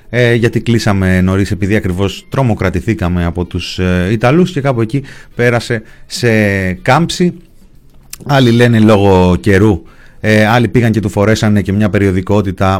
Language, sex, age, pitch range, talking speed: Greek, male, 30-49, 95-120 Hz, 125 wpm